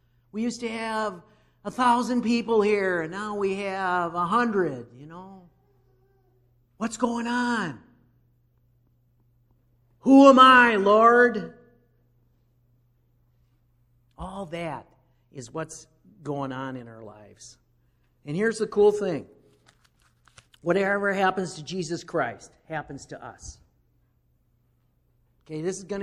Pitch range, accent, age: 135-210 Hz, American, 50-69